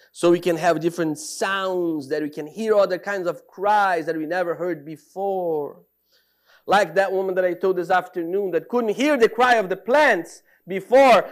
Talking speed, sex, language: 190 wpm, male, English